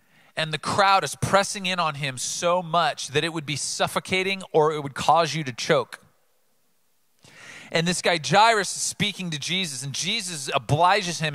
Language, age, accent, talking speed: English, 40-59, American, 180 wpm